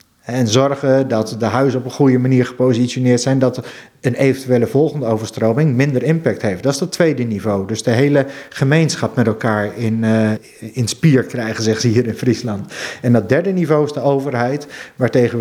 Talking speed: 185 wpm